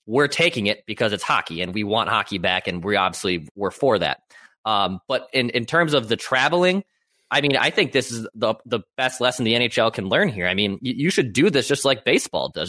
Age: 20-39